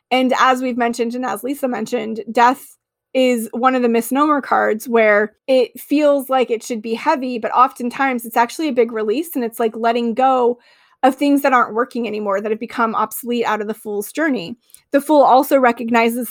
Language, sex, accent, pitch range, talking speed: English, female, American, 220-255 Hz, 200 wpm